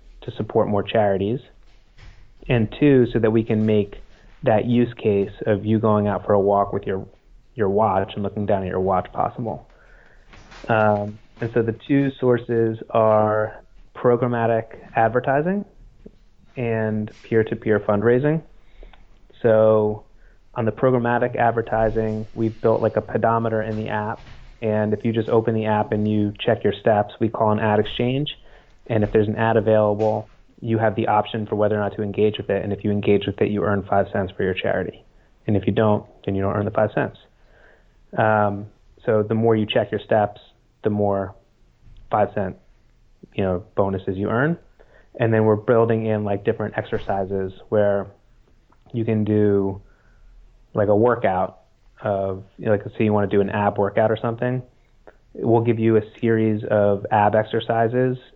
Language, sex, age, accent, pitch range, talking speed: English, male, 30-49, American, 105-115 Hz, 175 wpm